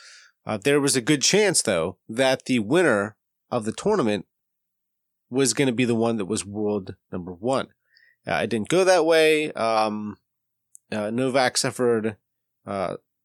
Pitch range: 105-135 Hz